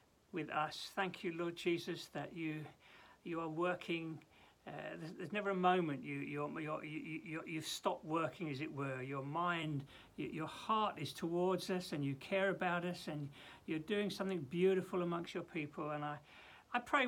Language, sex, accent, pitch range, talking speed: English, male, British, 145-195 Hz, 190 wpm